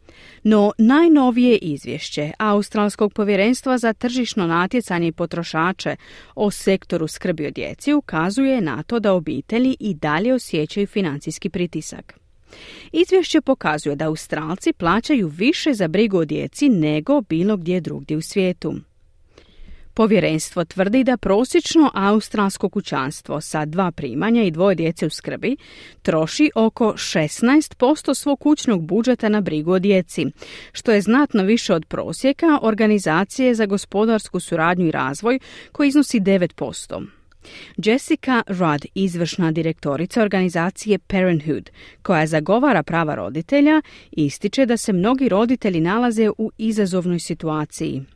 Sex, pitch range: female, 165-235 Hz